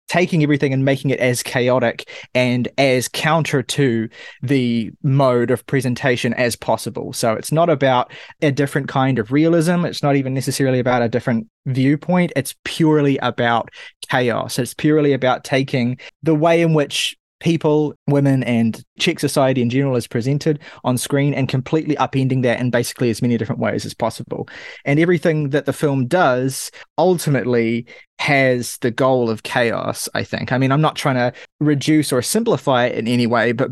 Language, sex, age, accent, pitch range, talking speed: English, male, 20-39, Australian, 120-145 Hz, 175 wpm